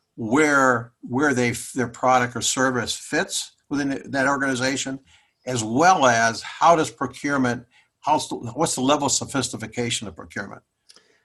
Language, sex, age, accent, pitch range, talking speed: English, male, 60-79, American, 120-140 Hz, 135 wpm